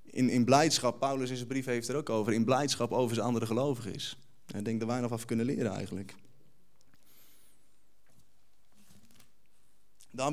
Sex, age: male, 20-39